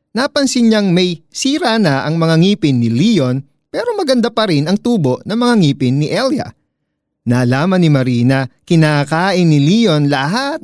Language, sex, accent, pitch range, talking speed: Filipino, male, native, 125-200 Hz, 165 wpm